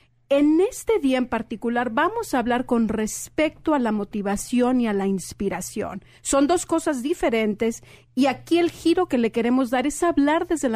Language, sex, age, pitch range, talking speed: English, female, 40-59, 210-270 Hz, 175 wpm